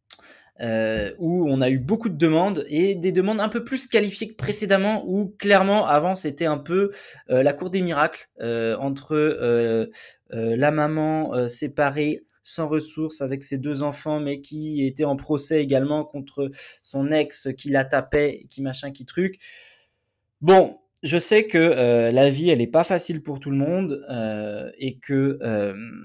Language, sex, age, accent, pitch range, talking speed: French, male, 20-39, French, 125-165 Hz, 175 wpm